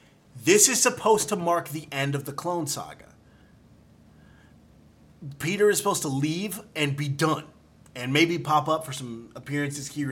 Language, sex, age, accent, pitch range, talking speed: English, male, 30-49, American, 125-160 Hz, 160 wpm